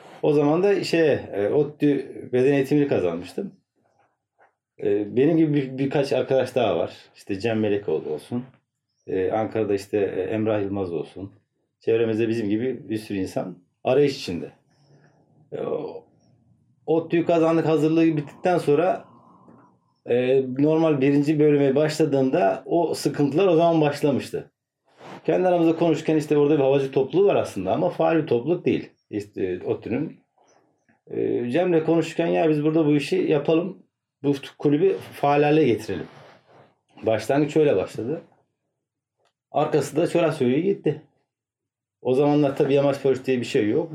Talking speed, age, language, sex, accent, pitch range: 120 wpm, 40-59, Turkish, male, native, 130-160 Hz